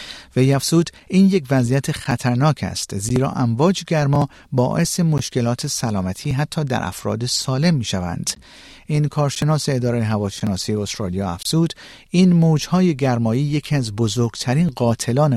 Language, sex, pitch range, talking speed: Persian, male, 110-150 Hz, 130 wpm